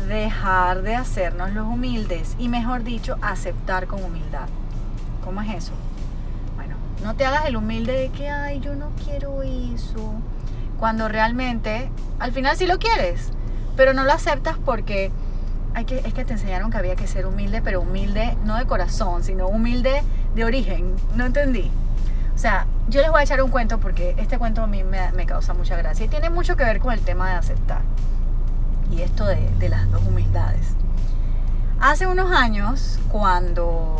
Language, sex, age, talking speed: Spanish, female, 30-49, 180 wpm